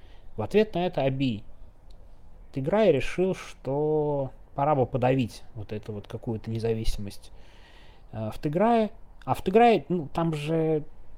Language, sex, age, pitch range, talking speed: Russian, male, 30-49, 105-145 Hz, 135 wpm